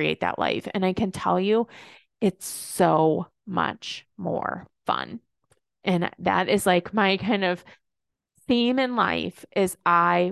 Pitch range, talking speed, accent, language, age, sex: 175-205 Hz, 145 wpm, American, English, 20-39, female